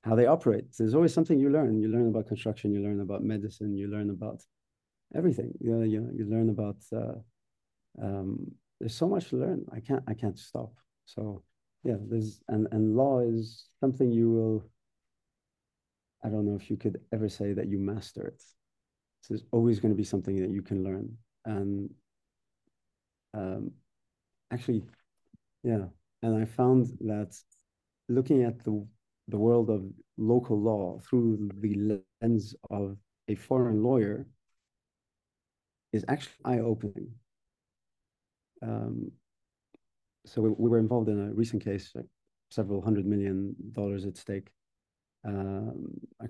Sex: male